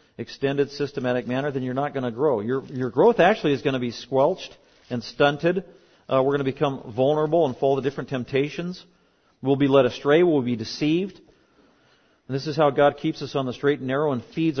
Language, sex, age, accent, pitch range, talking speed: English, male, 40-59, American, 145-180 Hz, 215 wpm